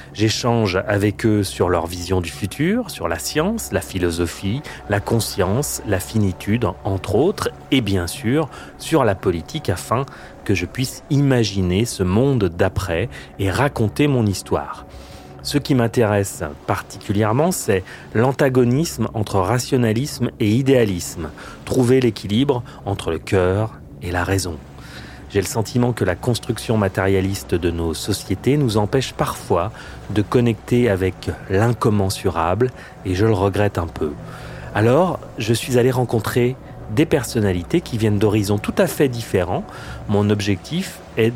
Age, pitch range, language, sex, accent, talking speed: 30-49, 95-125 Hz, French, male, French, 140 wpm